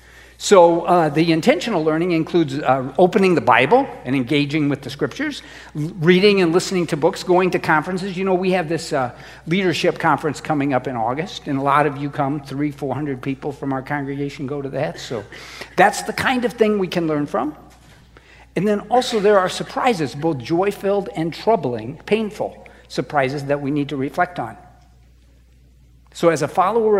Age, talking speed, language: 60-79, 180 wpm, English